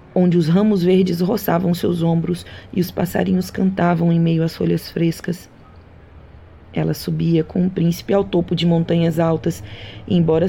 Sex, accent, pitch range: female, Brazilian, 115-185 Hz